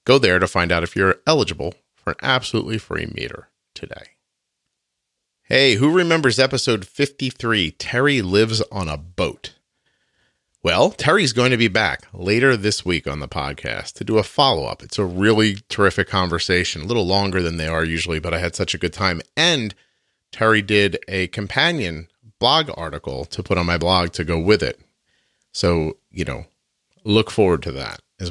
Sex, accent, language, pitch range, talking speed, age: male, American, English, 90-125 Hz, 175 wpm, 40-59